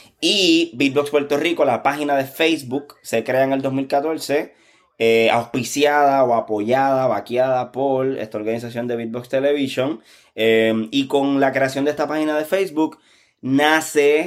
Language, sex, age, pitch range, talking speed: Spanish, male, 20-39, 110-140 Hz, 145 wpm